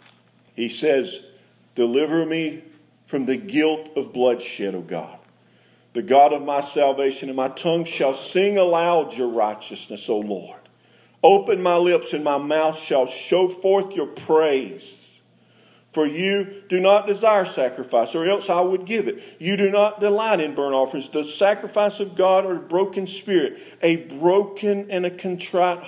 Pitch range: 120-175 Hz